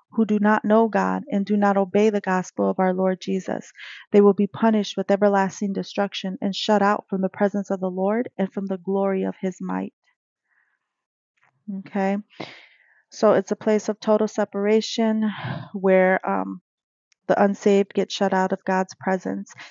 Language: English